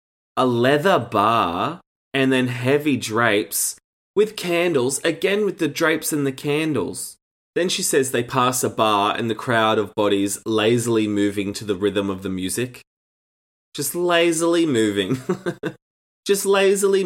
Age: 20-39